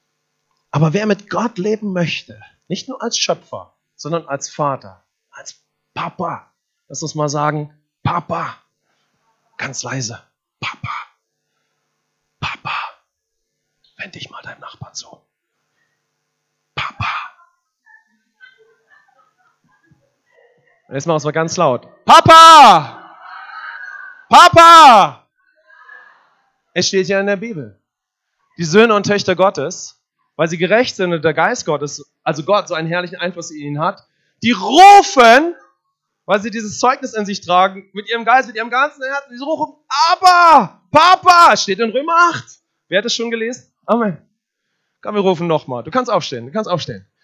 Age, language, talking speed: 30-49, English, 135 wpm